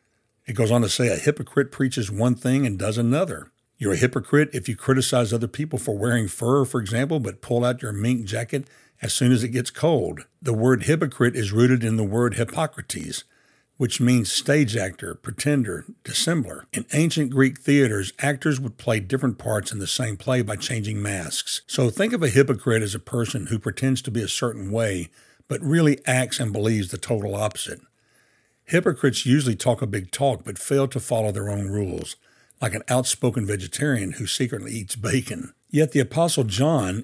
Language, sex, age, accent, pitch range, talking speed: English, male, 60-79, American, 110-135 Hz, 190 wpm